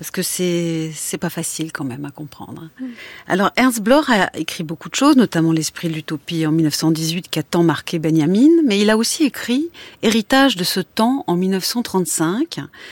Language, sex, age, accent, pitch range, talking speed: French, female, 40-59, French, 175-225 Hz, 185 wpm